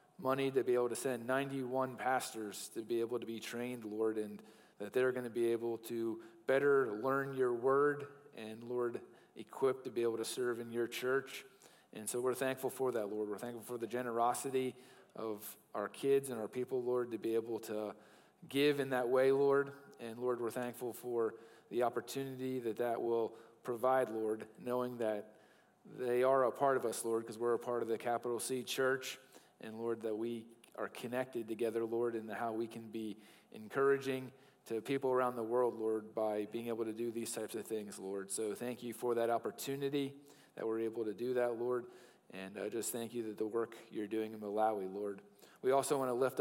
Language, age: English, 40-59